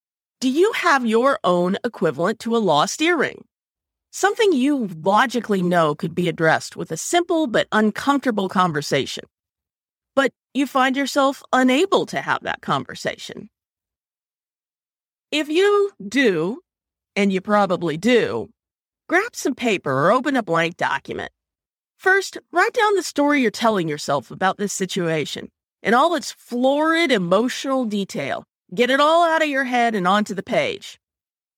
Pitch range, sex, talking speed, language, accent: 185-290 Hz, female, 145 wpm, English, American